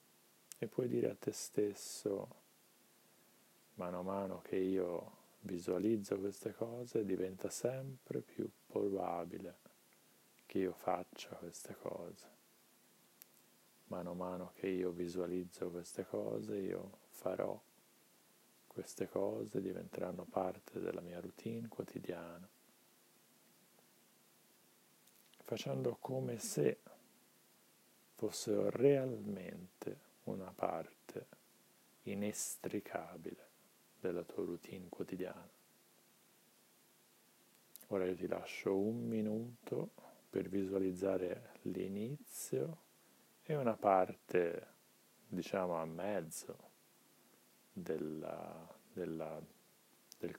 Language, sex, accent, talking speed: Italian, male, native, 80 wpm